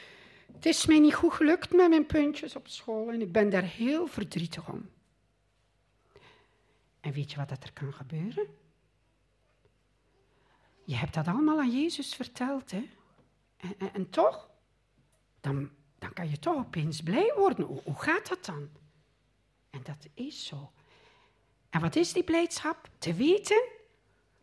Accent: Dutch